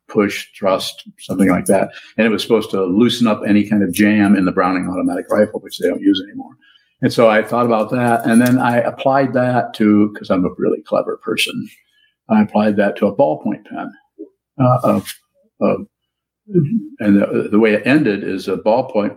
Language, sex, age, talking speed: English, male, 50-69, 195 wpm